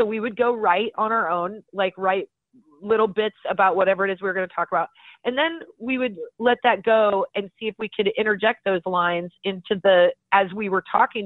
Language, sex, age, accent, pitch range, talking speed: English, female, 30-49, American, 185-230 Hz, 225 wpm